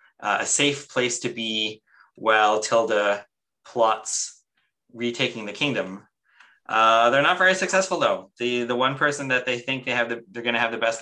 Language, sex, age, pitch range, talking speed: English, male, 20-39, 110-125 Hz, 185 wpm